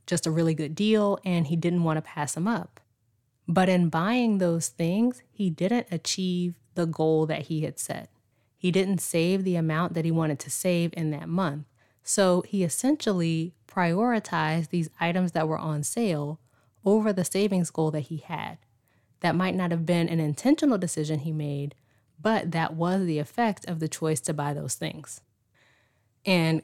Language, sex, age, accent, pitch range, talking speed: English, female, 20-39, American, 150-185 Hz, 180 wpm